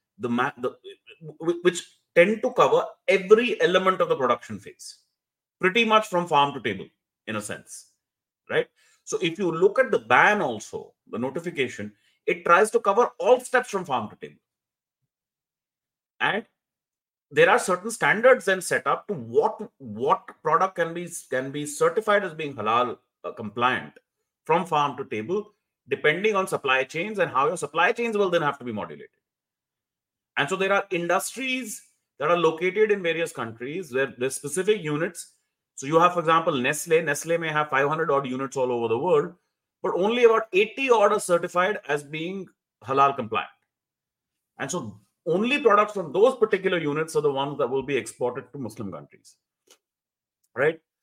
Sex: male